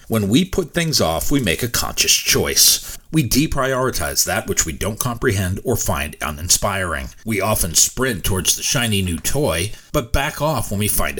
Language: English